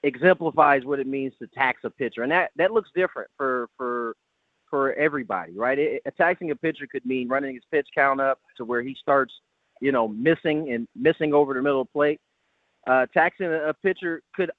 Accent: American